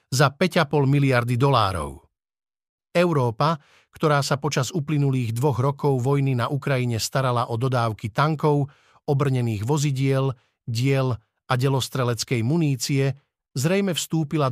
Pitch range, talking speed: 130-155 Hz, 110 wpm